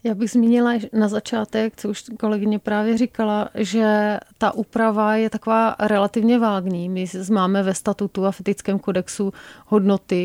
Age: 30-49